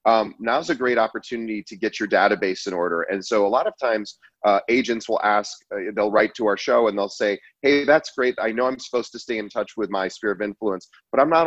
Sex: male